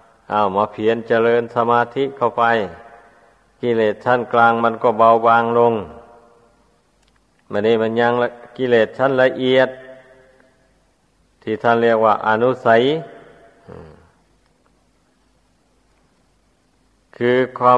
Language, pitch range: Thai, 110-125 Hz